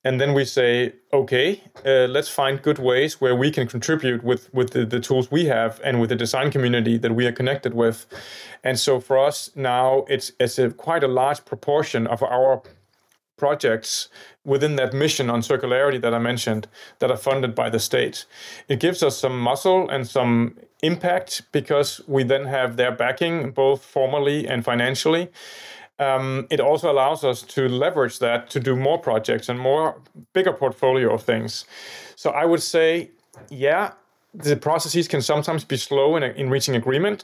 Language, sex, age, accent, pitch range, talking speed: English, male, 30-49, Danish, 125-145 Hz, 175 wpm